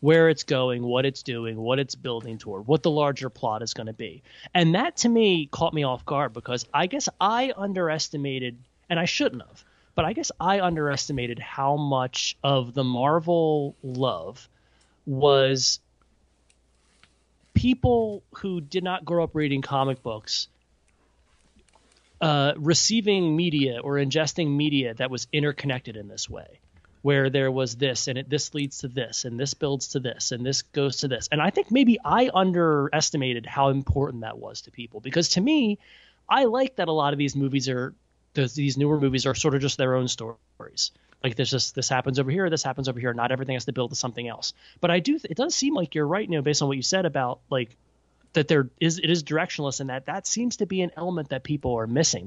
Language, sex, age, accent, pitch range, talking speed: English, male, 30-49, American, 125-165 Hz, 205 wpm